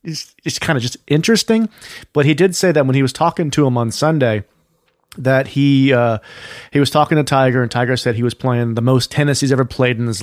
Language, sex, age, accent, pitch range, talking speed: English, male, 40-59, American, 120-155 Hz, 240 wpm